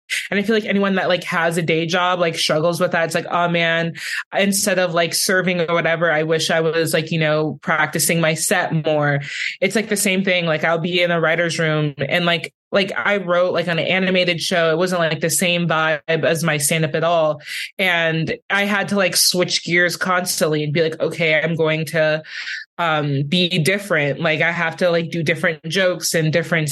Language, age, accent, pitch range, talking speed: English, 20-39, American, 165-190 Hz, 220 wpm